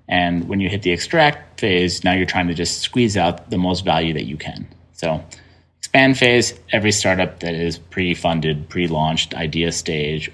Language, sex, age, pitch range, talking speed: English, male, 30-49, 85-100 Hz, 180 wpm